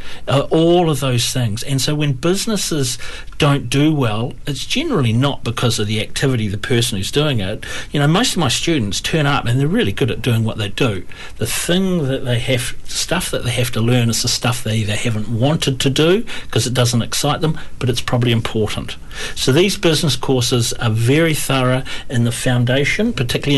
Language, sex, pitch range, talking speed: Portuguese, male, 115-145 Hz, 210 wpm